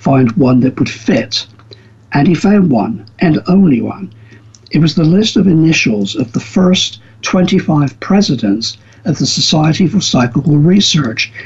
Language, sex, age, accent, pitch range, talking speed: English, male, 60-79, British, 115-170 Hz, 150 wpm